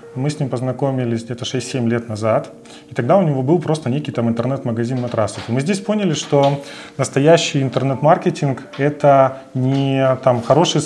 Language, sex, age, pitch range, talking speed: Russian, male, 20-39, 130-155 Hz, 165 wpm